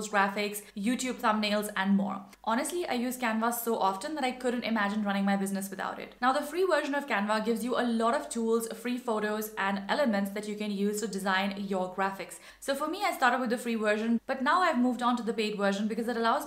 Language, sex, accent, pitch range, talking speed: English, female, Indian, 205-245 Hz, 235 wpm